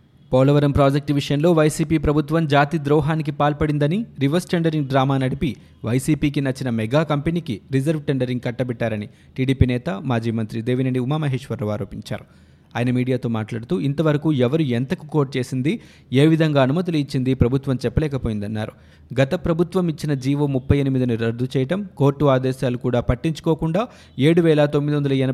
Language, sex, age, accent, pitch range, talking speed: Telugu, male, 20-39, native, 125-150 Hz, 125 wpm